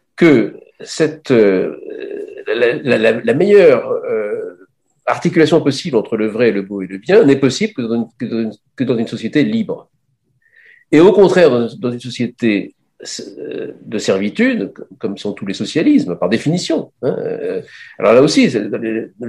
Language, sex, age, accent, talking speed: French, male, 50-69, French, 160 wpm